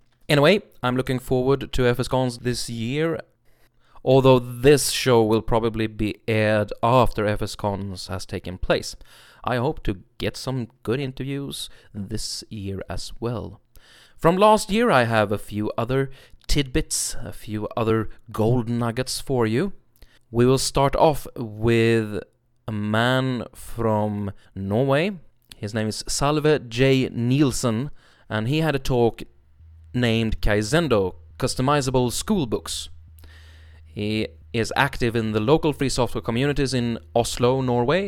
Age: 30-49